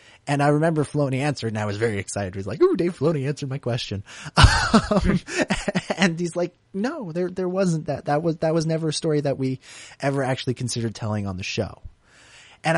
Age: 30-49